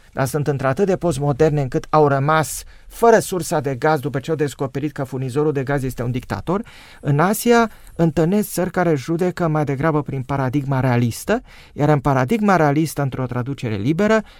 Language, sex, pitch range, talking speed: Romanian, male, 135-170 Hz, 175 wpm